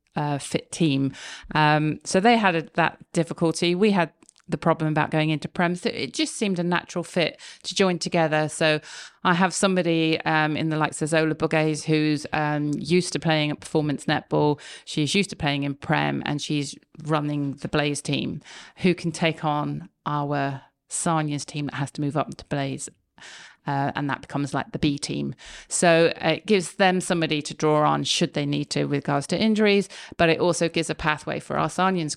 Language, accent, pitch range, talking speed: English, British, 145-165 Hz, 195 wpm